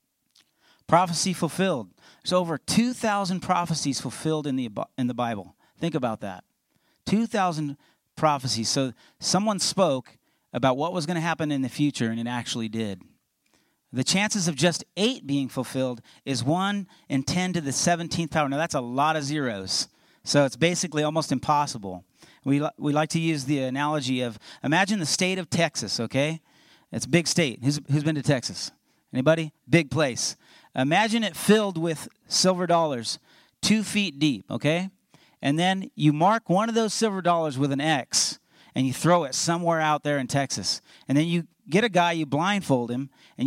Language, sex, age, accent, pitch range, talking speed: English, male, 40-59, American, 130-175 Hz, 175 wpm